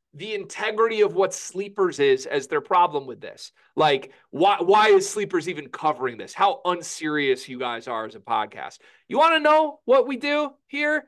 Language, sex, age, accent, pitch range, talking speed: English, male, 30-49, American, 195-285 Hz, 190 wpm